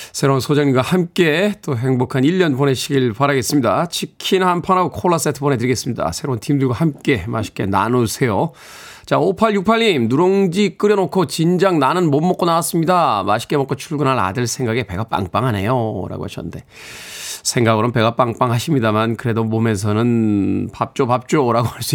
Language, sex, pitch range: Korean, male, 115-160 Hz